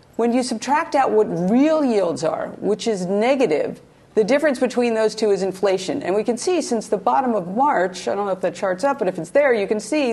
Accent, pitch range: American, 185-235 Hz